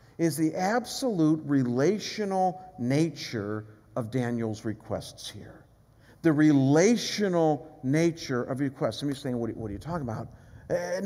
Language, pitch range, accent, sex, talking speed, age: English, 140-230 Hz, American, male, 140 wpm, 50-69